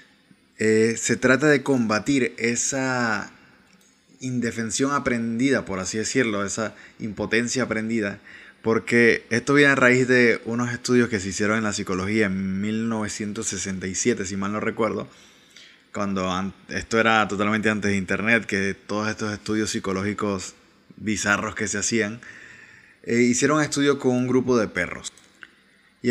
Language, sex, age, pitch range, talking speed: Spanish, male, 20-39, 100-125 Hz, 140 wpm